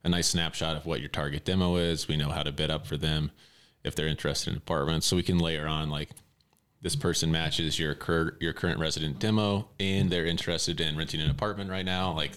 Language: English